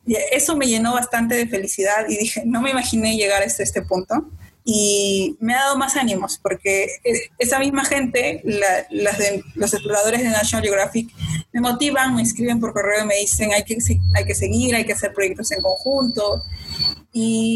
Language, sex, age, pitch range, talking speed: Spanish, female, 20-39, 195-235 Hz, 185 wpm